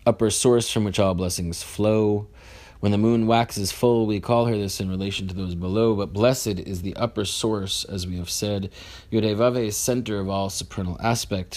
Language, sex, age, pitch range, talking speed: English, male, 30-49, 95-110 Hz, 190 wpm